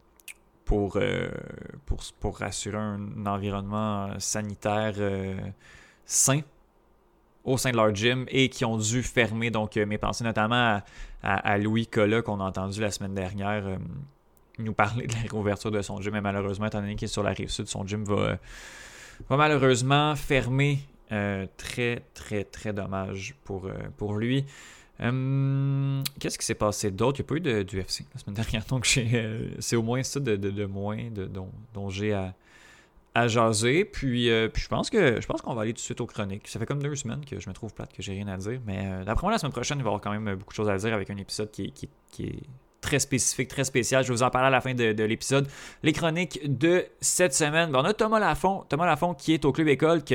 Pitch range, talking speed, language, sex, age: 105-130 Hz, 225 wpm, French, male, 20-39